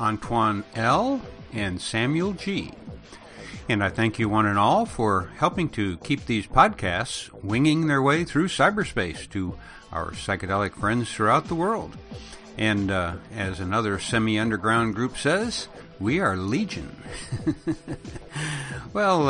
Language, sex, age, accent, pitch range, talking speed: English, male, 60-79, American, 100-135 Hz, 130 wpm